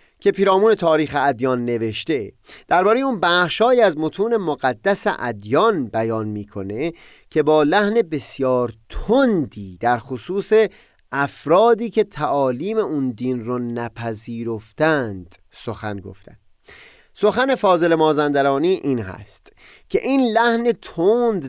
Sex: male